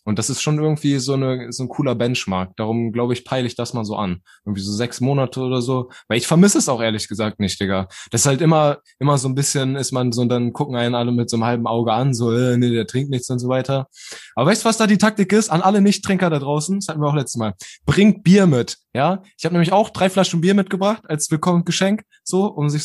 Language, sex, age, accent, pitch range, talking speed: German, male, 20-39, German, 115-170 Hz, 265 wpm